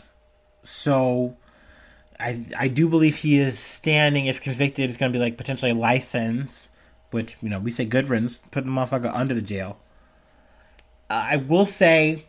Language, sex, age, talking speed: English, male, 30-49, 160 wpm